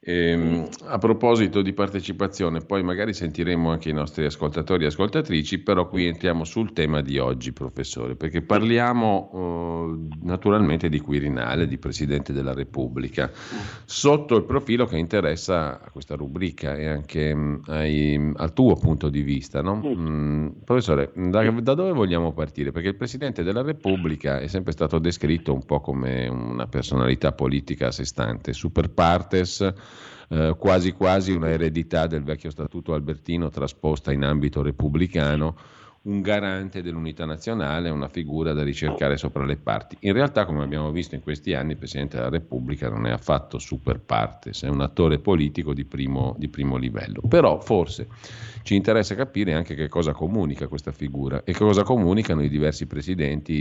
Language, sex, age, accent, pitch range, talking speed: Italian, male, 50-69, native, 70-95 Hz, 155 wpm